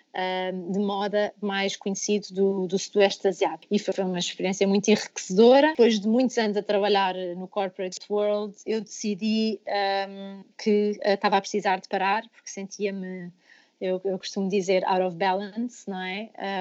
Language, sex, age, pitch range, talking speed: Portuguese, female, 20-39, 195-225 Hz, 165 wpm